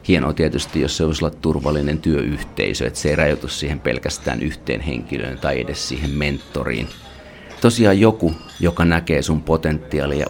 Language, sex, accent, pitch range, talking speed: Finnish, male, native, 70-85 Hz, 145 wpm